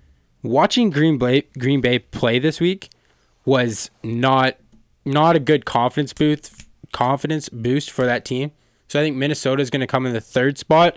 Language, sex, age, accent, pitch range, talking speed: English, male, 20-39, American, 130-165 Hz, 175 wpm